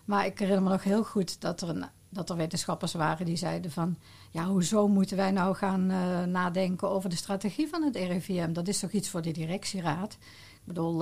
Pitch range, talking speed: 170-200 Hz, 205 wpm